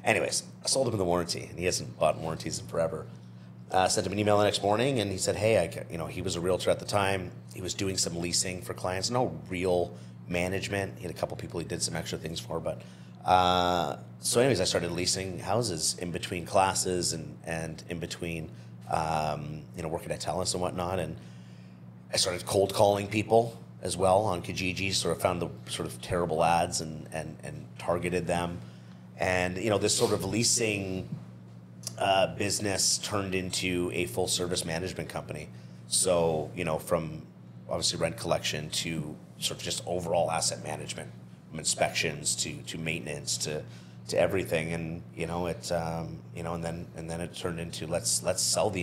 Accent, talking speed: American, 195 wpm